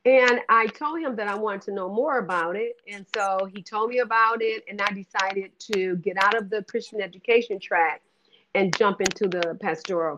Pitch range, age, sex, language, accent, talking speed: 180-220 Hz, 50-69, female, English, American, 205 wpm